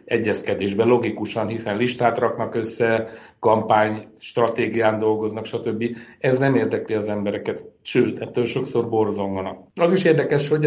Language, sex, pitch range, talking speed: Hungarian, male, 110-135 Hz, 130 wpm